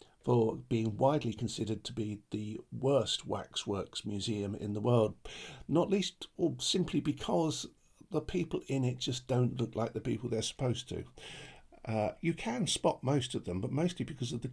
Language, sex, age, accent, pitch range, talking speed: English, male, 50-69, British, 105-130 Hz, 180 wpm